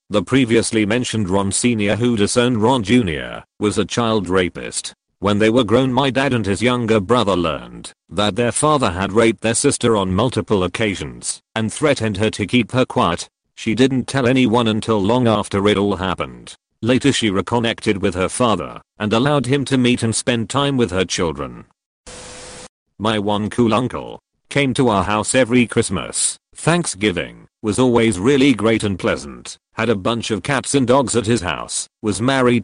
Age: 40-59